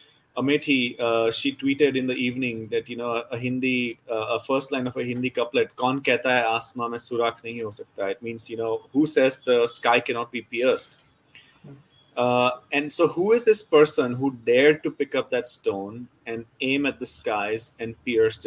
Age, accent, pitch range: 30-49, Indian, 120-150 Hz